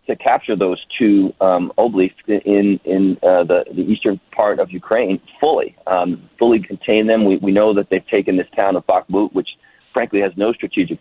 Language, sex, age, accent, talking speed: English, male, 40-59, American, 190 wpm